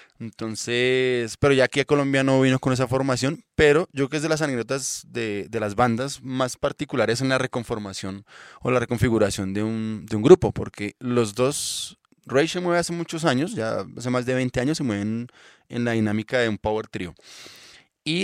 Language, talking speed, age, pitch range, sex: Spanish, 200 wpm, 20-39, 110-140 Hz, male